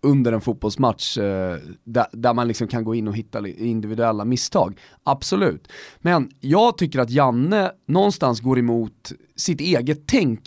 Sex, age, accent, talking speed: male, 30-49, native, 145 wpm